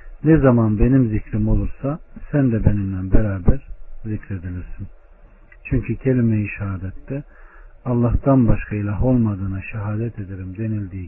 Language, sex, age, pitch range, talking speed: Turkish, male, 60-79, 95-115 Hz, 105 wpm